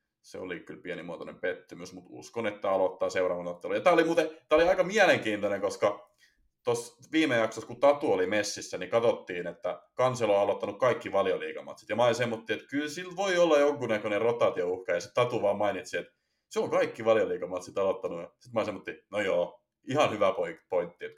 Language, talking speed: Finnish, 180 wpm